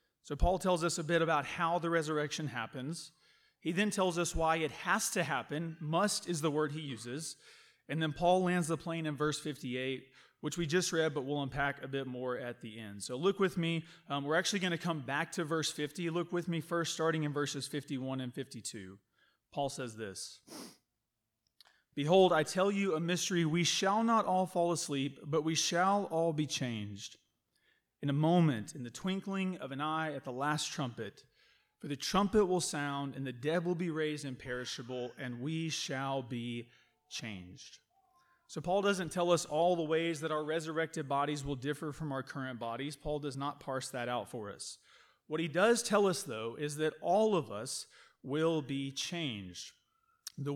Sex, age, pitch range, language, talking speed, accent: male, 30-49, 140-170 Hz, English, 195 wpm, American